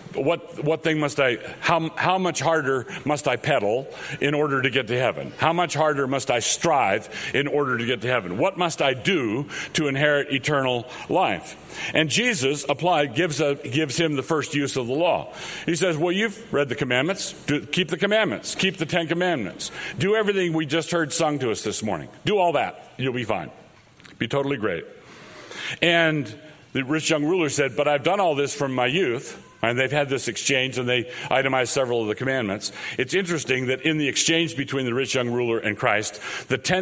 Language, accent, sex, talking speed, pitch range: English, American, male, 205 wpm, 130-160 Hz